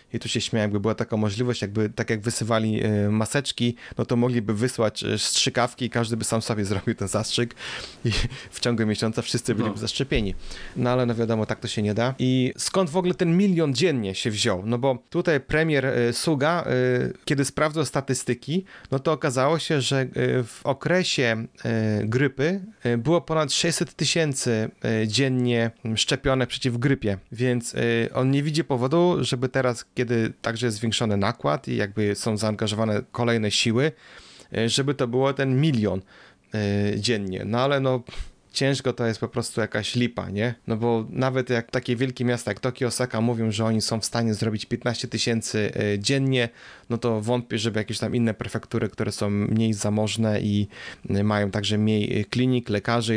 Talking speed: 165 wpm